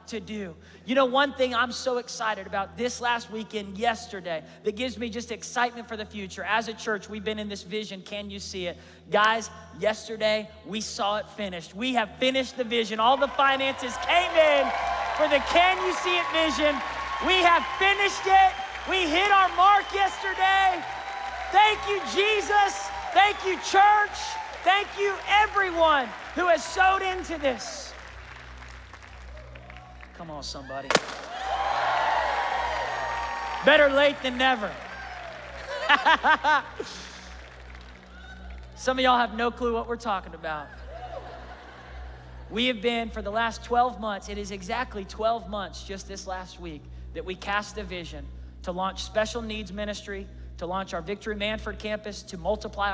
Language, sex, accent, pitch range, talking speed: English, male, American, 195-275 Hz, 150 wpm